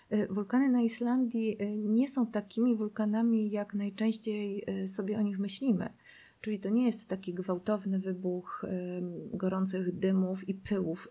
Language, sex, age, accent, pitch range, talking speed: Polish, female, 30-49, native, 185-215 Hz, 130 wpm